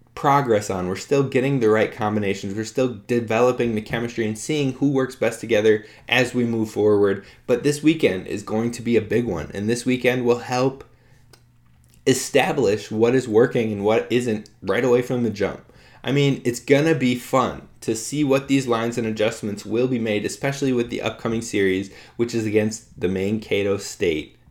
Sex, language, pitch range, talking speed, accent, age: male, English, 105-125 Hz, 190 wpm, American, 20-39